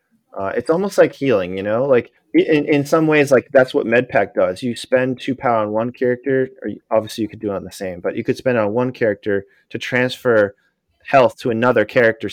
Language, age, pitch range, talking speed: English, 30-49, 115-145 Hz, 235 wpm